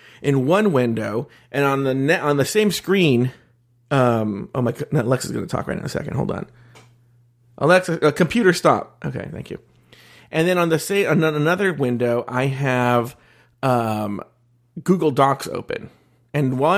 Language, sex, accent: English, male, American